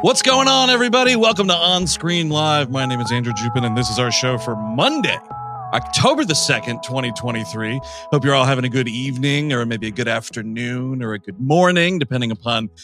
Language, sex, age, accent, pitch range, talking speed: English, male, 40-59, American, 125-175 Hz, 200 wpm